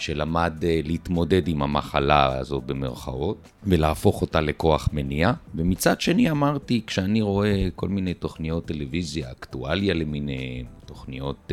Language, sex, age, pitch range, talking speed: Hebrew, male, 40-59, 70-85 Hz, 115 wpm